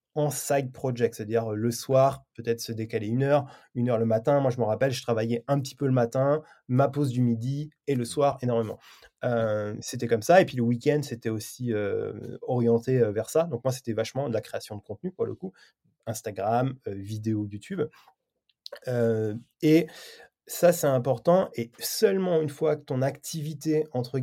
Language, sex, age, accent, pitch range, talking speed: French, male, 20-39, French, 120-145 Hz, 190 wpm